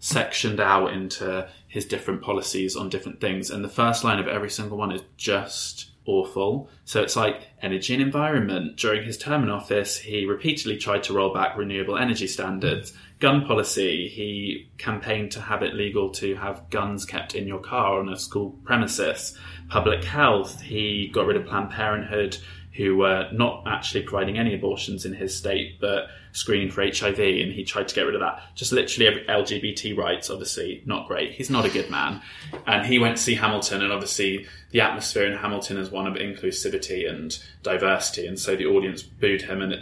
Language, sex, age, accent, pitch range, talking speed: English, male, 20-39, British, 95-110 Hz, 190 wpm